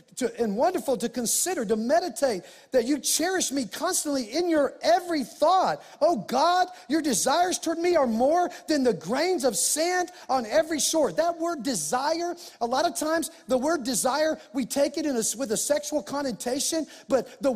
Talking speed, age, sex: 180 wpm, 40-59, male